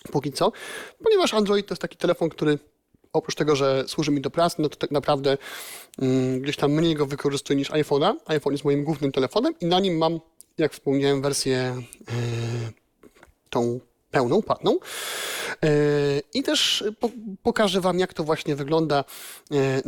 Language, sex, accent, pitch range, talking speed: Polish, male, native, 130-170 Hz, 165 wpm